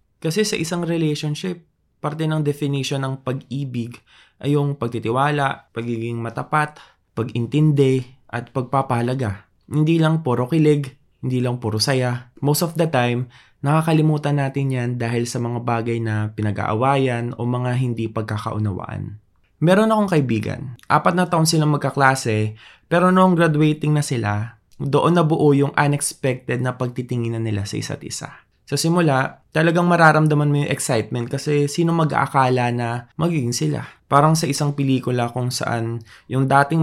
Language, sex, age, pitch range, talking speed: Filipino, male, 20-39, 120-150 Hz, 140 wpm